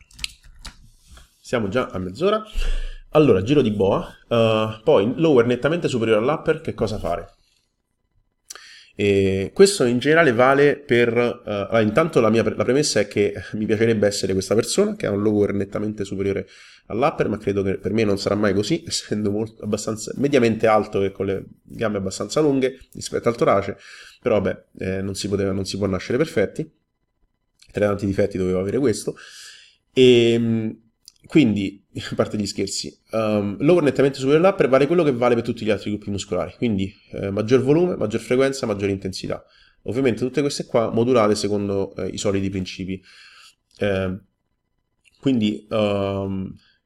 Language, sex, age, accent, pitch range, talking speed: Italian, male, 30-49, native, 100-125 Hz, 160 wpm